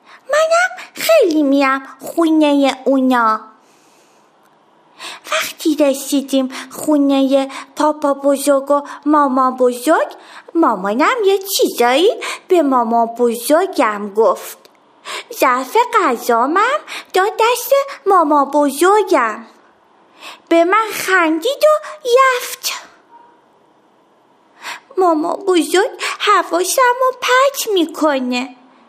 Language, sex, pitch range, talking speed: Persian, female, 280-395 Hz, 75 wpm